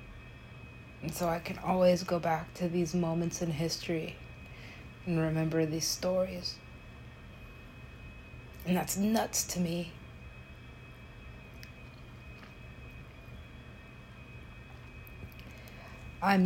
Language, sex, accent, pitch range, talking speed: English, female, American, 160-195 Hz, 80 wpm